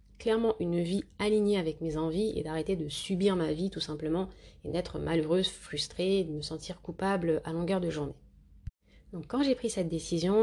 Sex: female